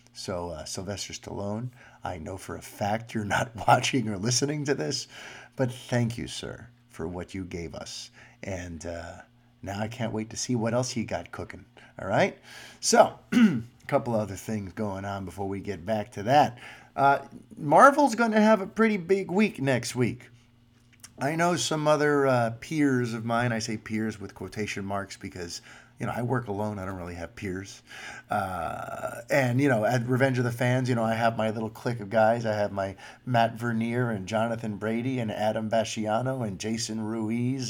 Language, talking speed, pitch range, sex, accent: English, 195 wpm, 110-135 Hz, male, American